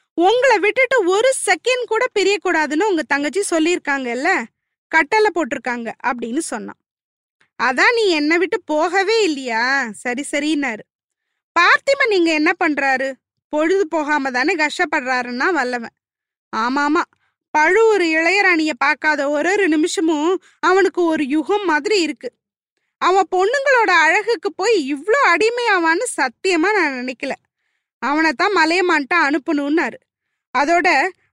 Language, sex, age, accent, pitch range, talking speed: Tamil, female, 20-39, native, 295-390 Hz, 105 wpm